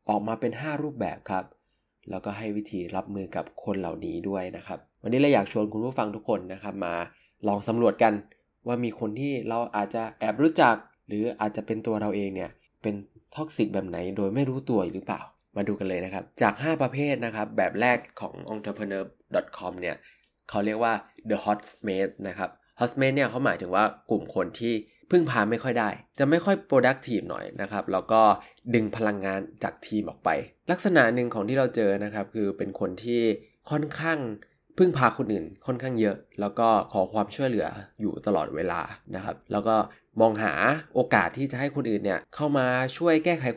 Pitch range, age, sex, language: 100-130 Hz, 20-39, male, Thai